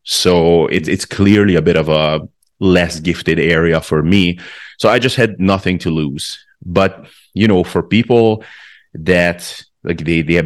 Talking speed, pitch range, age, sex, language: 170 wpm, 85-100 Hz, 30-49, male, English